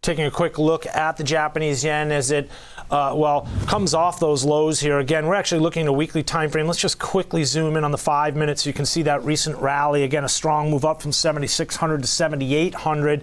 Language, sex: English, male